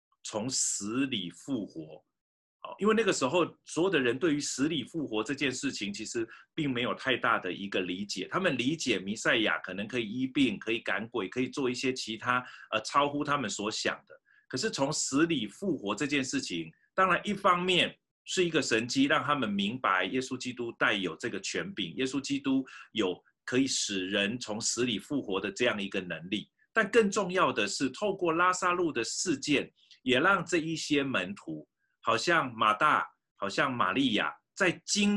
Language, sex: Chinese, male